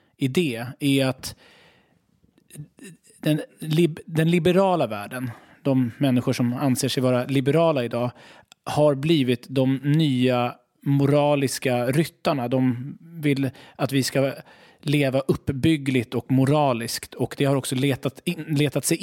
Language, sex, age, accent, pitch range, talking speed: English, male, 30-49, Swedish, 130-155 Hz, 115 wpm